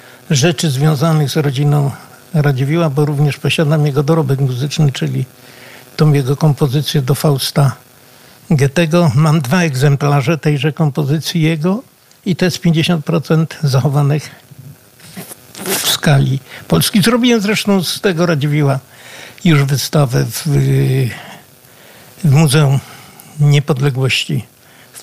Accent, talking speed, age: native, 105 wpm, 60-79